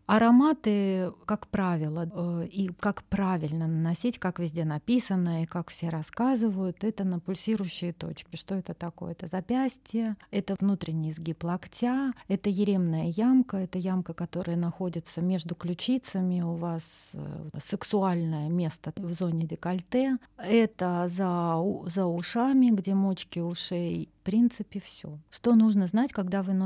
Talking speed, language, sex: 130 wpm, Russian, female